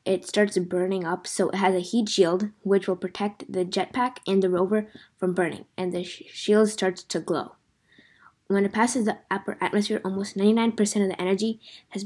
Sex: female